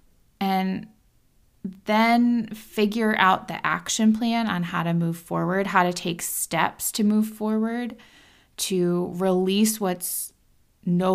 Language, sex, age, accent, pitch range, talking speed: English, female, 20-39, American, 180-215 Hz, 125 wpm